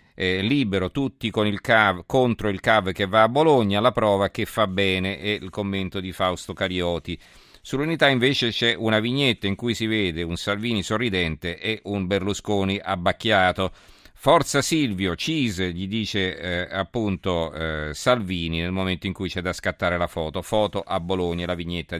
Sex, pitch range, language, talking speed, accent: male, 90-115 Hz, Italian, 170 wpm, native